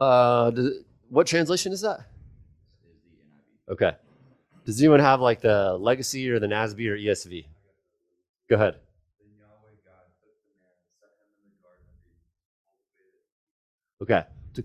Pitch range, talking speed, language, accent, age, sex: 105-155 Hz, 85 wpm, English, American, 30-49, male